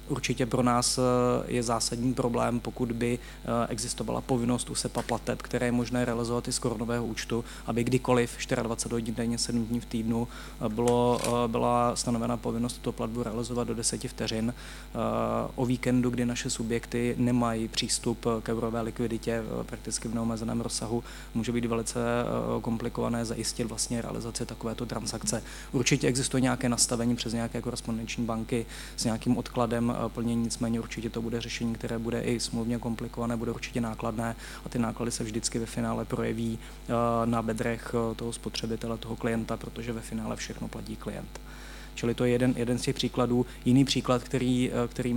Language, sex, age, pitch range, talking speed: Czech, male, 20-39, 115-120 Hz, 160 wpm